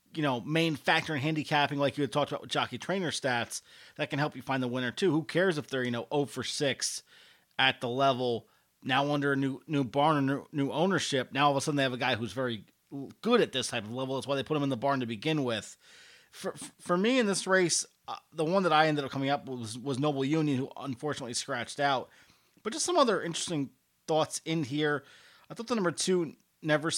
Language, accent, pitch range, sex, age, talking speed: English, American, 130-155 Hz, male, 30-49, 245 wpm